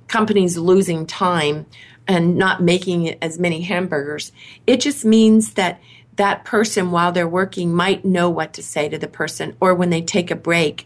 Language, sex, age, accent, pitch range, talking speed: English, female, 40-59, American, 165-215 Hz, 175 wpm